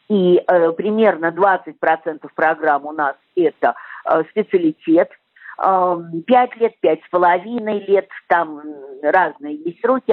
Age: 50-69